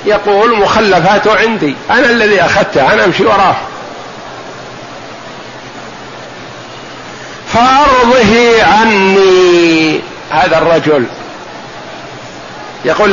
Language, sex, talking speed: Arabic, male, 65 wpm